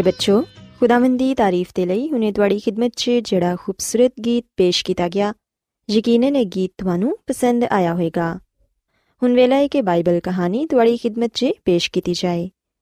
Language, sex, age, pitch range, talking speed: Punjabi, female, 20-39, 190-265 Hz, 160 wpm